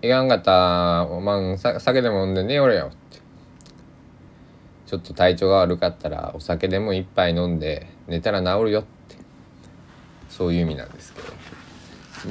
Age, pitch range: 20-39, 75-90 Hz